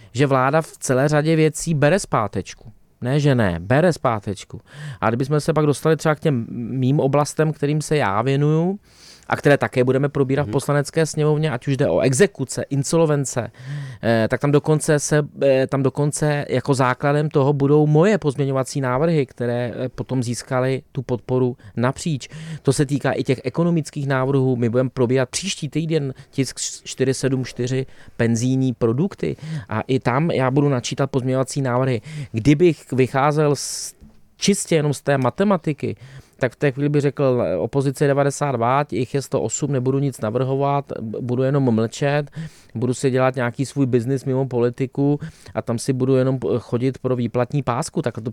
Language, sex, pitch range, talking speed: Czech, male, 125-145 Hz, 160 wpm